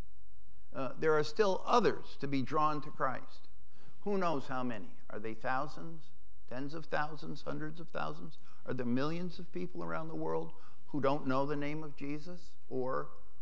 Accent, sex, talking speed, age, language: American, male, 170 wpm, 60-79, English